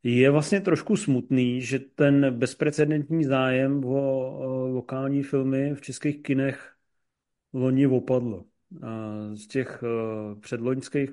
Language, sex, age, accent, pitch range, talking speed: Czech, male, 40-59, native, 125-135 Hz, 100 wpm